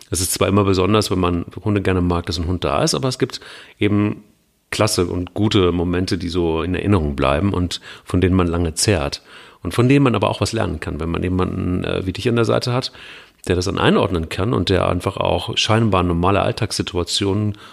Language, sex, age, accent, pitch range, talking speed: German, male, 40-59, German, 90-110 Hz, 220 wpm